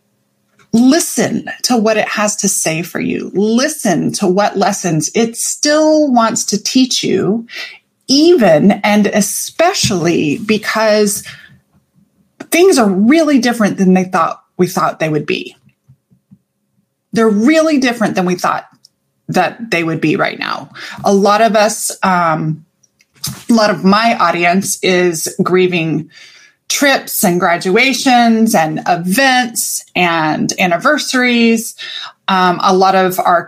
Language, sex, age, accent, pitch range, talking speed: English, female, 20-39, American, 185-245 Hz, 125 wpm